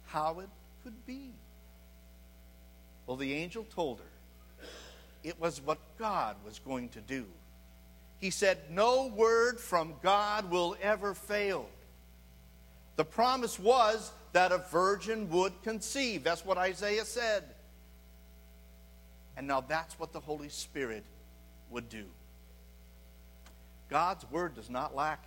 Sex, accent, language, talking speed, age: male, American, English, 125 wpm, 60-79